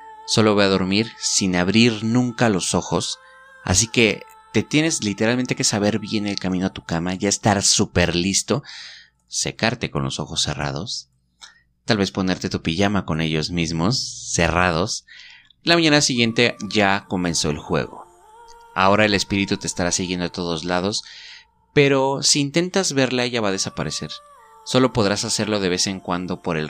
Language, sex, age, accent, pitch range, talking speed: Spanish, male, 30-49, Mexican, 85-120 Hz, 165 wpm